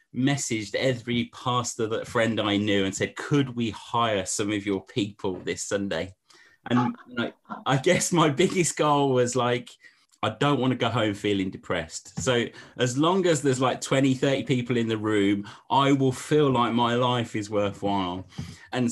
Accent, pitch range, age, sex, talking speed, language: British, 115-145 Hz, 30-49, male, 175 wpm, English